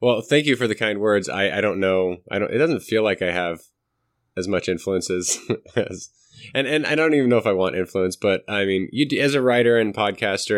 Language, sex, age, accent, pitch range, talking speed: English, male, 20-39, American, 90-115 Hz, 245 wpm